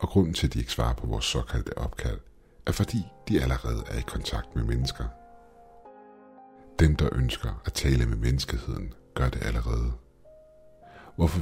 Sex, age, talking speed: male, 60-79, 165 wpm